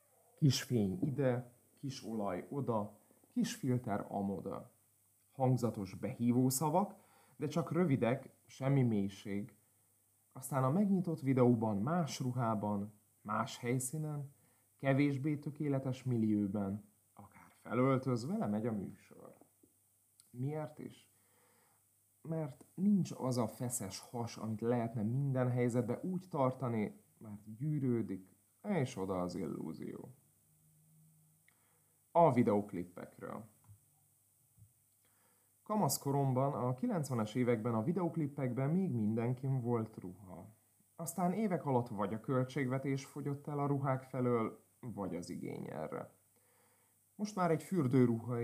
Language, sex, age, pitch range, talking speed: Hungarian, male, 30-49, 105-140 Hz, 105 wpm